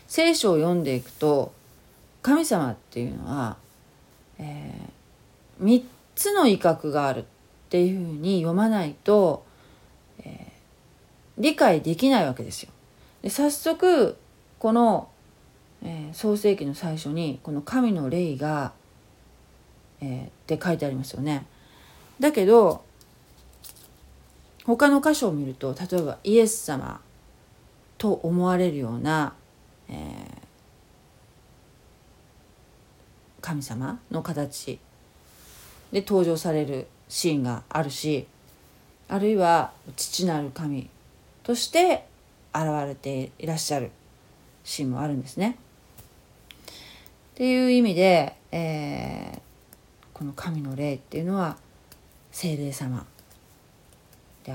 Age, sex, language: 40-59, female, Japanese